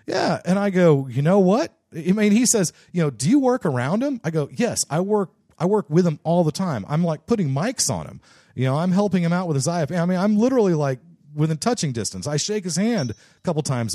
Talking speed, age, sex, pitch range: 260 wpm, 40-59, male, 125-175 Hz